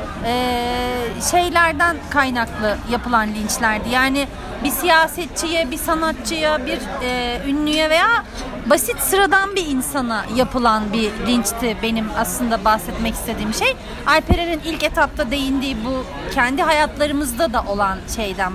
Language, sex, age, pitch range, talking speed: Turkish, female, 40-59, 245-330 Hz, 115 wpm